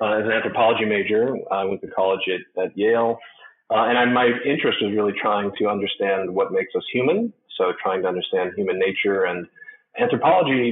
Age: 30-49